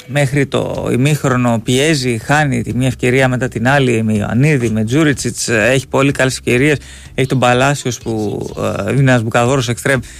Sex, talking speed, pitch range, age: male, 160 wpm, 120-145 Hz, 20-39